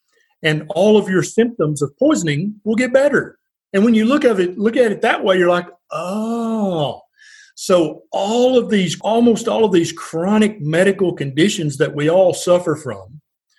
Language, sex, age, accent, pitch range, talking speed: English, male, 40-59, American, 155-205 Hz, 175 wpm